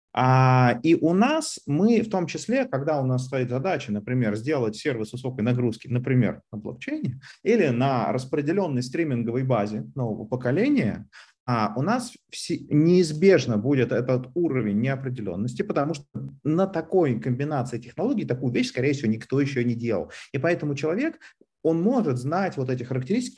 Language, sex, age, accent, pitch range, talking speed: Russian, male, 30-49, native, 125-185 Hz, 145 wpm